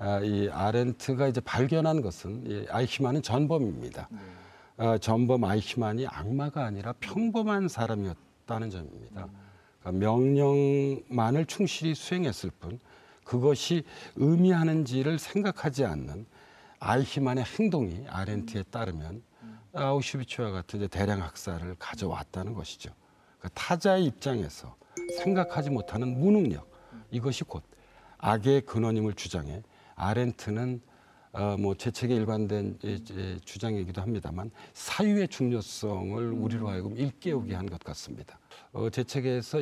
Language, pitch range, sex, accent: Korean, 105-140 Hz, male, native